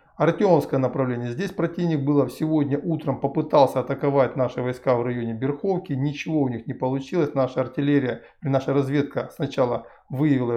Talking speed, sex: 140 wpm, male